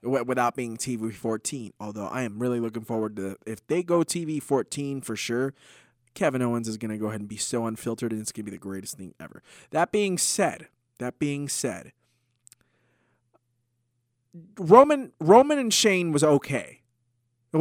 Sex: male